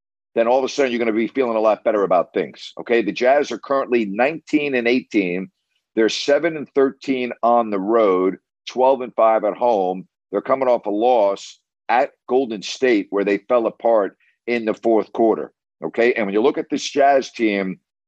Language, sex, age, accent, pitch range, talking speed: English, male, 50-69, American, 100-135 Hz, 200 wpm